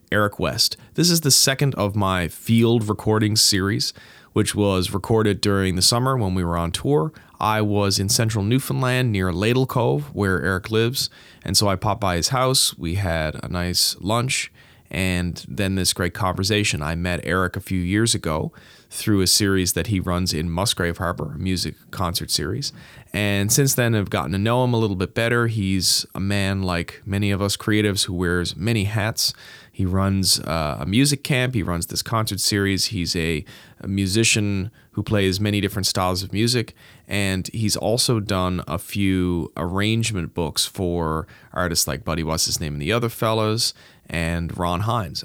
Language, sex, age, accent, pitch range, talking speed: English, male, 30-49, American, 90-115 Hz, 185 wpm